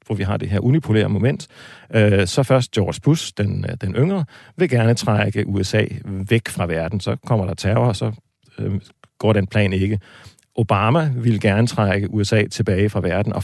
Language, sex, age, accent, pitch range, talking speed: Danish, male, 40-59, native, 100-130 Hz, 180 wpm